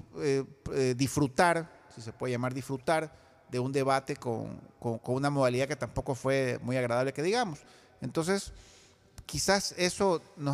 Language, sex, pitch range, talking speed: Spanish, male, 130-180 Hz, 155 wpm